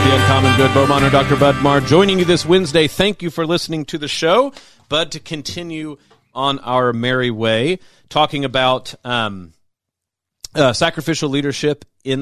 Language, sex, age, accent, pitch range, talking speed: English, male, 40-59, American, 115-150 Hz, 160 wpm